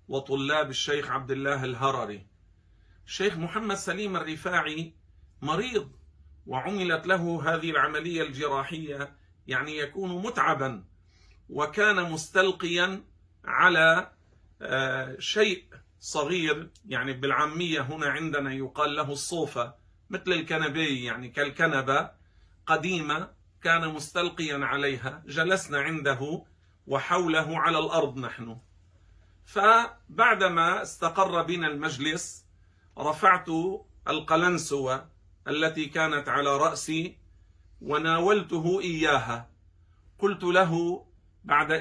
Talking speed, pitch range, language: 85 wpm, 120-170 Hz, Arabic